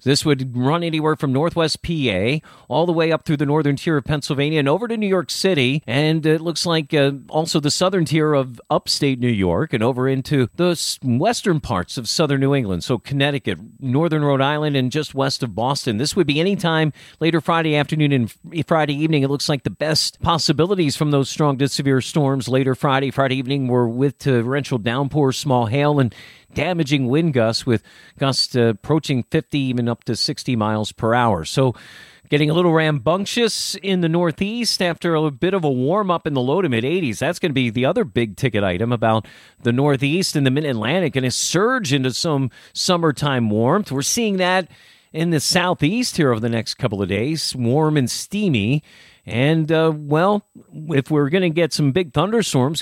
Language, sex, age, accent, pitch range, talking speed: English, male, 40-59, American, 130-160 Hz, 200 wpm